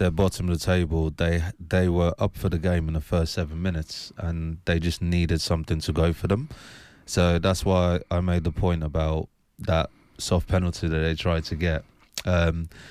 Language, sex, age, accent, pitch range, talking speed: English, male, 20-39, British, 80-95 Hz, 200 wpm